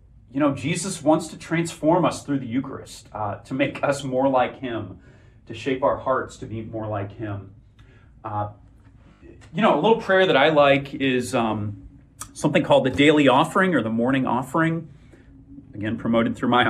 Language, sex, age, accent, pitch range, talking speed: English, male, 30-49, American, 110-155 Hz, 180 wpm